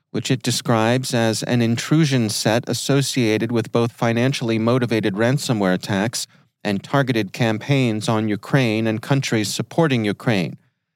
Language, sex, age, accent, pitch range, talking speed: English, male, 40-59, American, 105-135 Hz, 125 wpm